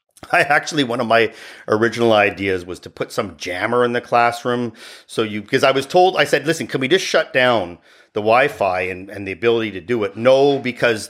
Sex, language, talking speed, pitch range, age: male, English, 215 wpm, 105-130 Hz, 40-59